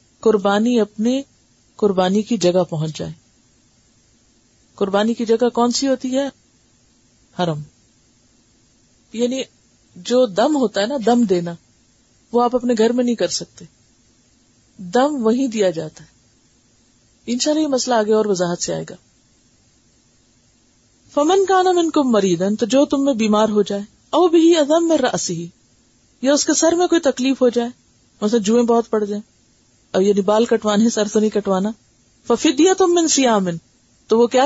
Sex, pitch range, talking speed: female, 155-255 Hz, 150 wpm